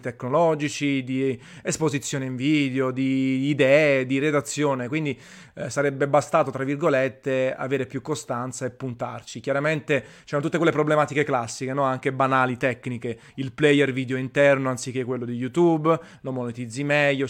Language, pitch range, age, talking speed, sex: Italian, 130-150 Hz, 30-49, 140 wpm, male